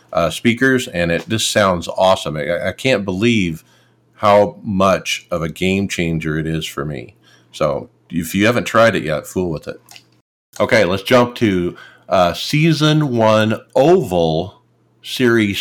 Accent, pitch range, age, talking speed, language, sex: American, 90-120 Hz, 50-69, 155 wpm, English, male